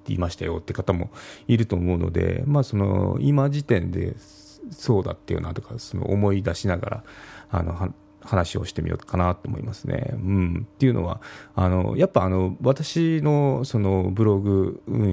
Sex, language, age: male, Japanese, 30-49